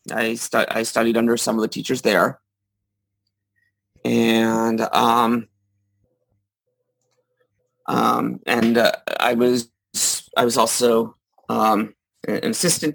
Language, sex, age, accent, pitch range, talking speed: English, male, 30-49, American, 110-145 Hz, 105 wpm